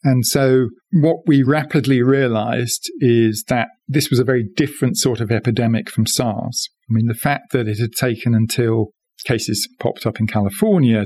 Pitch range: 105-130 Hz